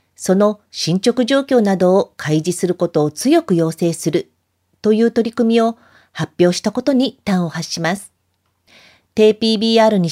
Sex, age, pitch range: female, 40-59, 170-215 Hz